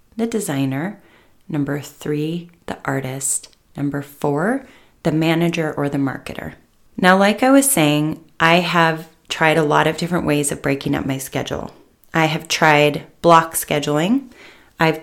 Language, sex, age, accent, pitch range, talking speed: English, female, 30-49, American, 150-175 Hz, 150 wpm